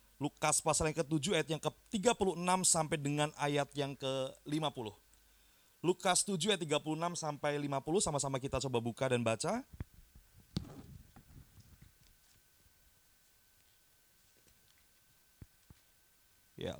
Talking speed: 90 wpm